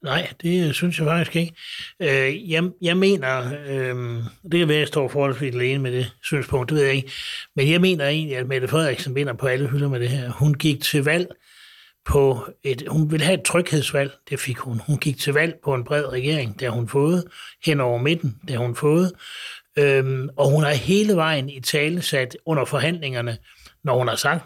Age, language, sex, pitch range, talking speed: 60-79, Danish, male, 130-155 Hz, 215 wpm